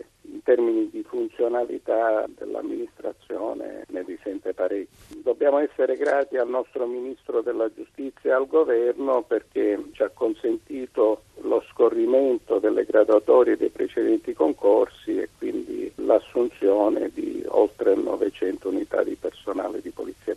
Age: 50-69